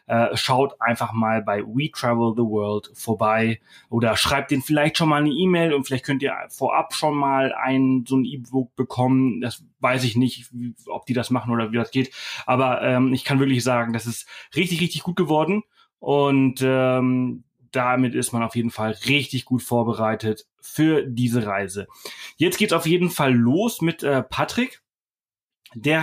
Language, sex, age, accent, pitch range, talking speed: German, male, 30-49, German, 120-140 Hz, 180 wpm